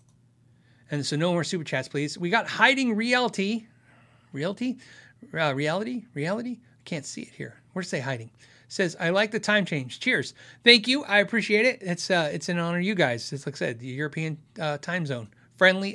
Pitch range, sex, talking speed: 130-205 Hz, male, 205 wpm